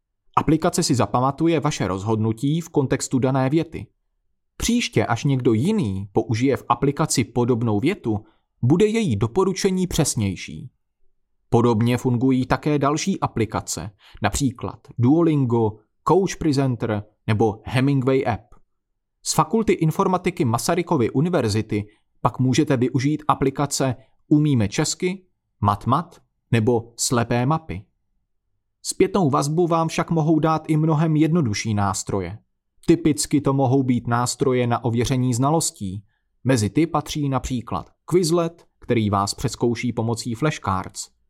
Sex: male